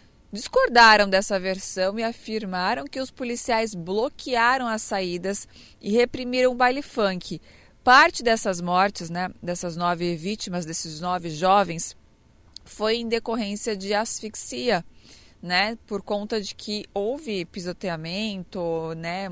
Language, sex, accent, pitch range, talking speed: Portuguese, female, Brazilian, 180-225 Hz, 120 wpm